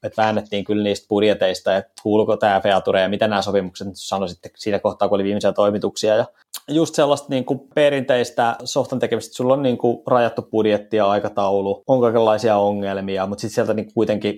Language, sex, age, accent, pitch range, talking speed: Finnish, male, 20-39, native, 105-120 Hz, 175 wpm